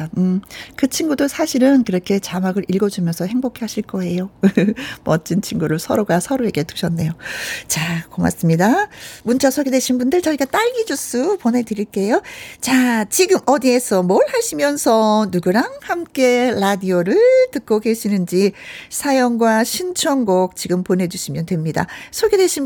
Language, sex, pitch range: Korean, female, 180-275 Hz